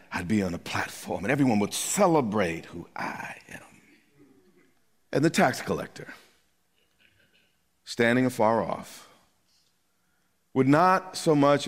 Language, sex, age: English, male, 40-59